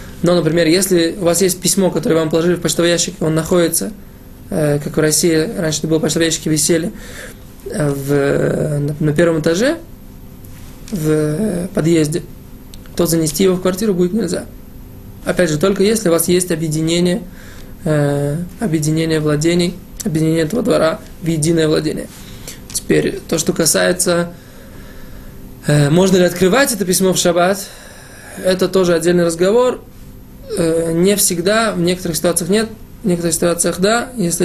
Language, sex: Russian, male